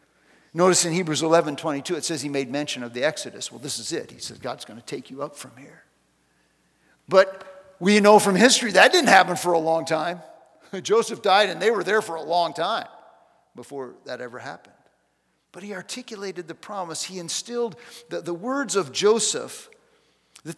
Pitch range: 160-240 Hz